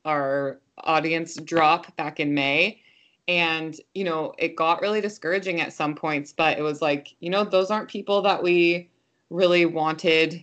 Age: 20-39